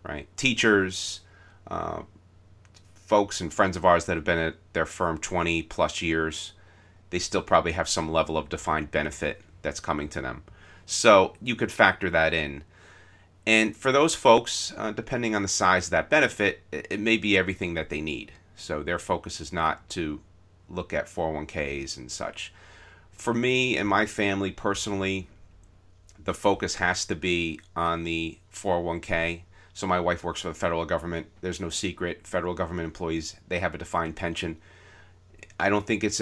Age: 30-49